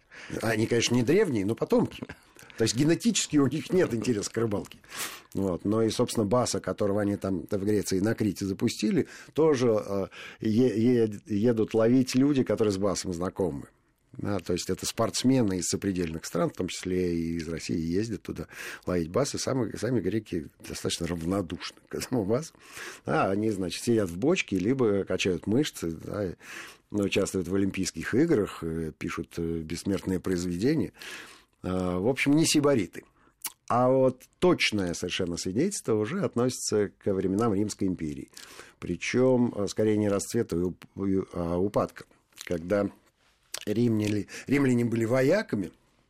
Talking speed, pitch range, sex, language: 135 wpm, 90-115 Hz, male, Russian